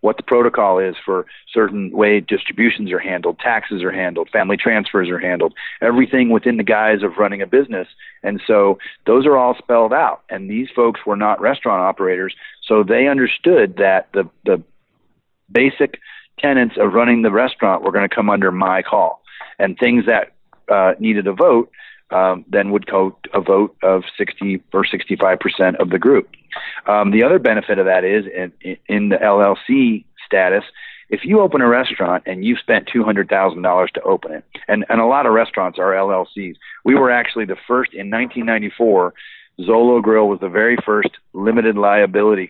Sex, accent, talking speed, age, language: male, American, 175 wpm, 40-59, English